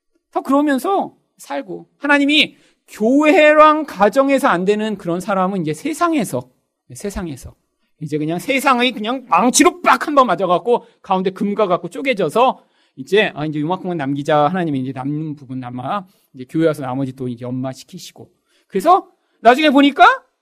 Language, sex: Korean, male